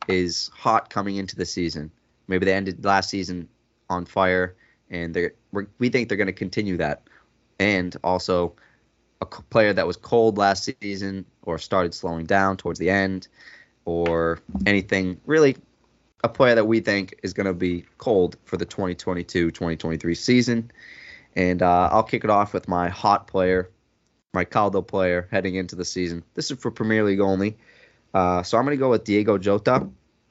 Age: 20-39